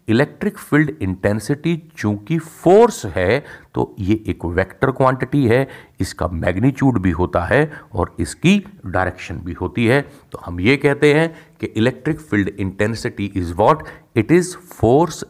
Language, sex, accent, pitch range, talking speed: Hindi, male, native, 95-150 Hz, 140 wpm